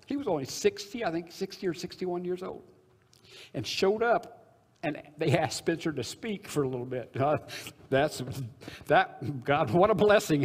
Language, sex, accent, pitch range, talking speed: English, male, American, 120-165 Hz, 180 wpm